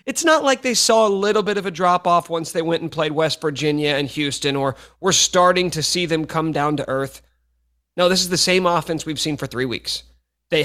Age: 30-49